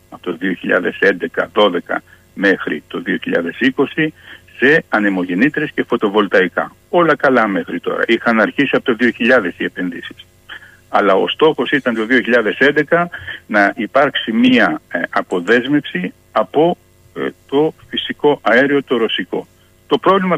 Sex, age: male, 60-79